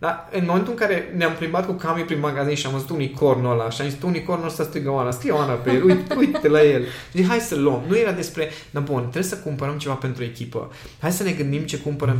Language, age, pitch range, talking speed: Romanian, 20-39, 135-190 Hz, 255 wpm